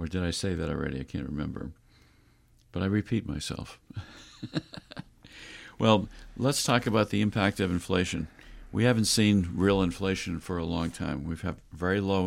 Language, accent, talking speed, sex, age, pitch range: English, American, 165 wpm, male, 50-69, 85-100 Hz